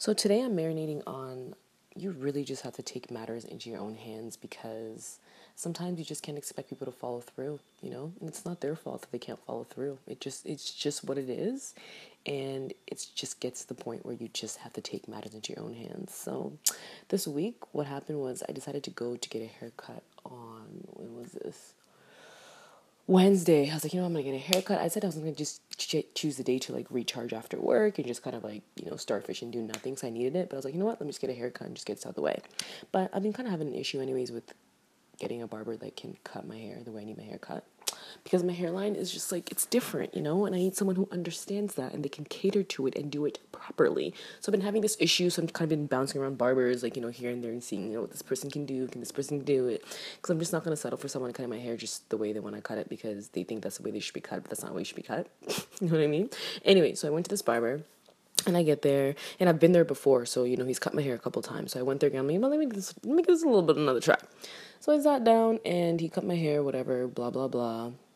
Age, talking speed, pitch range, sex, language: 20-39, 290 wpm, 125-185 Hz, female, English